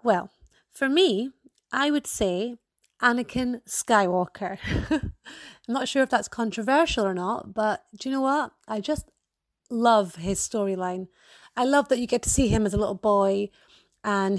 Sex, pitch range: female, 210-265 Hz